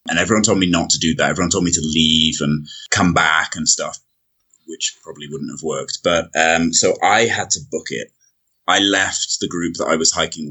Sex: male